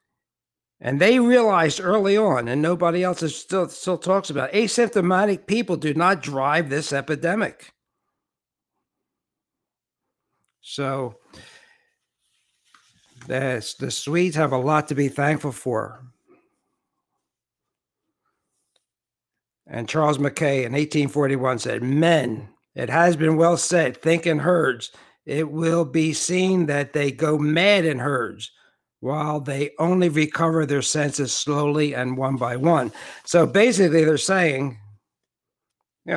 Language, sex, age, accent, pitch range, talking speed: English, male, 60-79, American, 135-175 Hz, 115 wpm